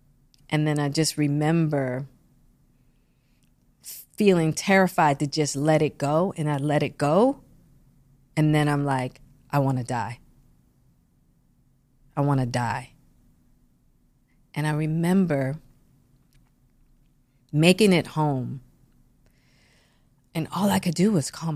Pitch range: 130-165 Hz